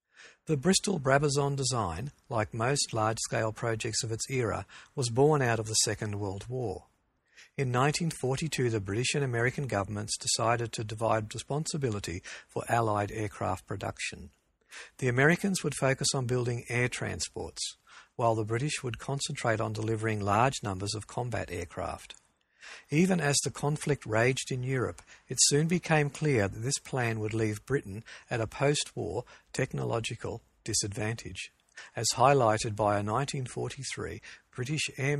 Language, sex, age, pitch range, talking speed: English, male, 50-69, 110-140 Hz, 140 wpm